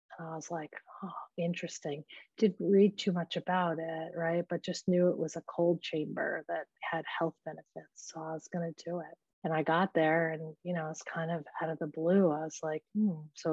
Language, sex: English, female